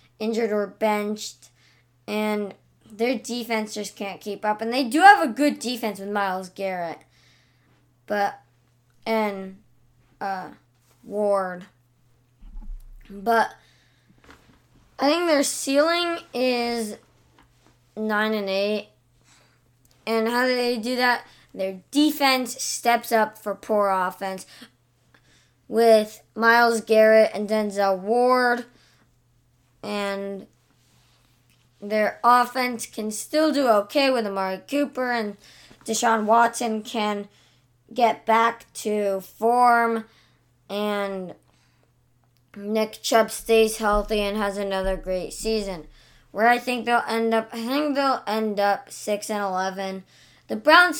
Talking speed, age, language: 115 wpm, 20-39, English